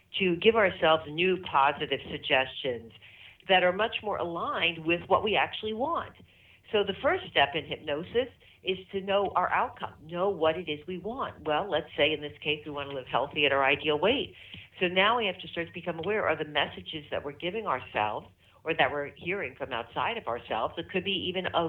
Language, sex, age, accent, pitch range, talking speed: English, female, 50-69, American, 135-180 Hz, 210 wpm